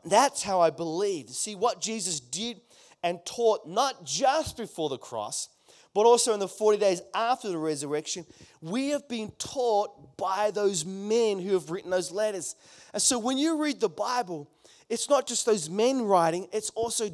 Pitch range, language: 150-215 Hz, English